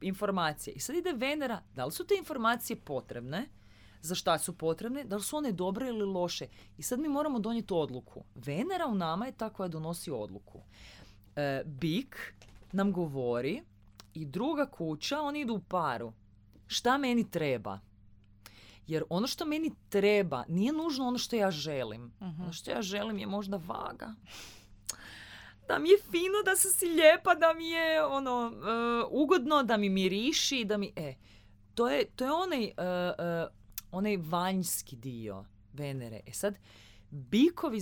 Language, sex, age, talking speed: Croatian, female, 30-49, 155 wpm